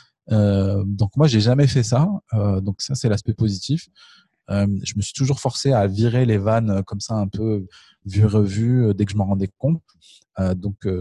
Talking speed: 215 wpm